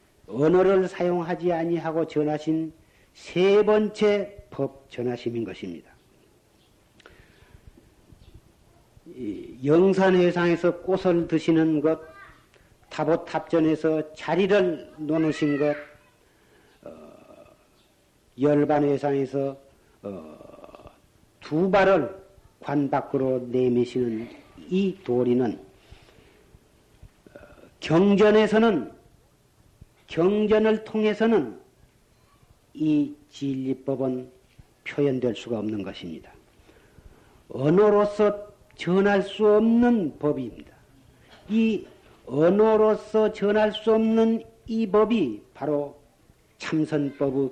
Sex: male